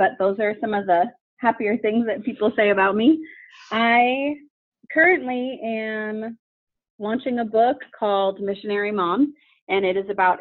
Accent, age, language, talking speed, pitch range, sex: American, 30-49, English, 150 wpm, 190-245 Hz, female